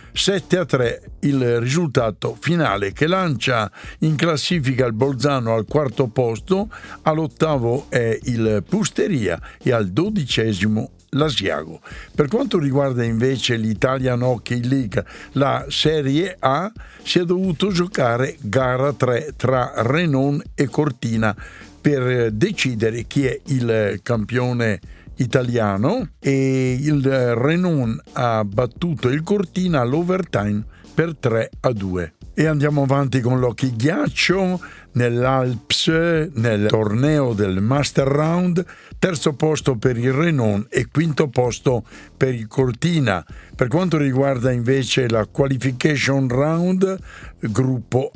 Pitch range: 115-155 Hz